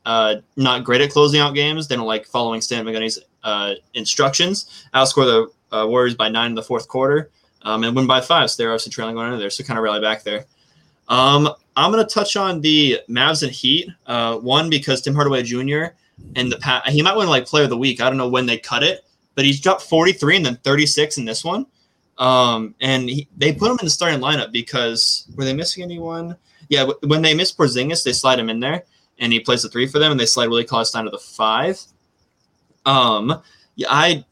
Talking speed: 235 wpm